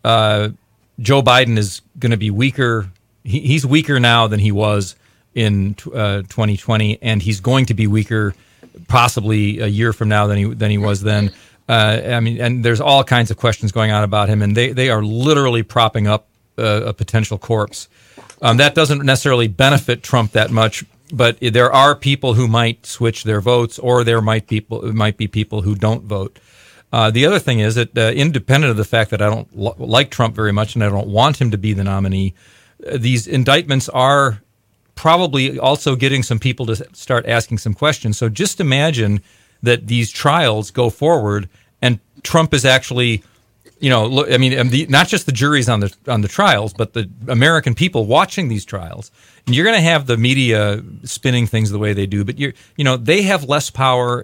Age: 40-59